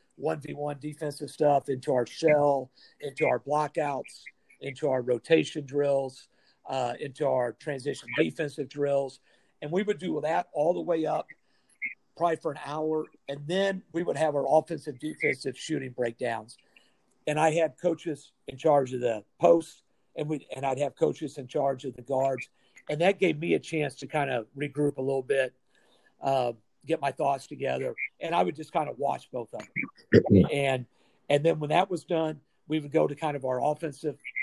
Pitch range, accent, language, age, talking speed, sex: 130-155 Hz, American, English, 50-69, 185 wpm, male